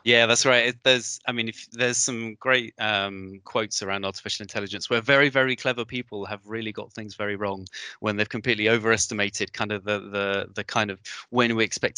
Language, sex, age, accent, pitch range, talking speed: English, male, 20-39, British, 100-120 Hz, 200 wpm